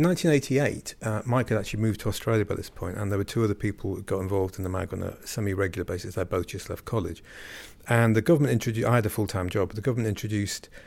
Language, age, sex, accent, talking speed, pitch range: English, 40-59, male, British, 255 wpm, 95-115 Hz